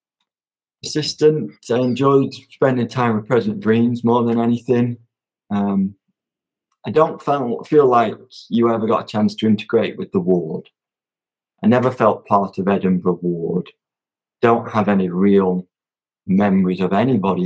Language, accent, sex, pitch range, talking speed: English, British, male, 95-135 Hz, 140 wpm